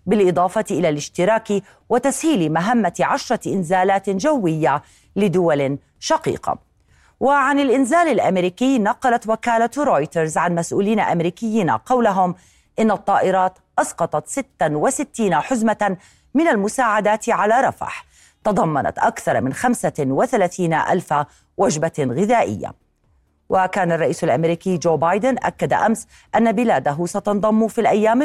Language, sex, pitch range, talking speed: Arabic, female, 165-230 Hz, 100 wpm